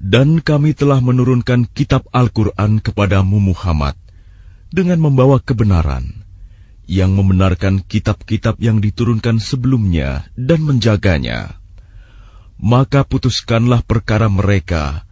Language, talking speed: Indonesian, 90 wpm